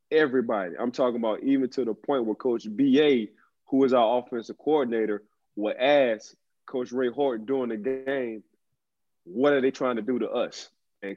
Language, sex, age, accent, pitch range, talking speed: English, male, 20-39, American, 110-130 Hz, 175 wpm